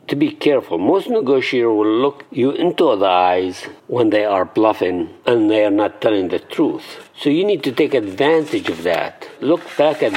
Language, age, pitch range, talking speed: English, 50-69, 315-390 Hz, 195 wpm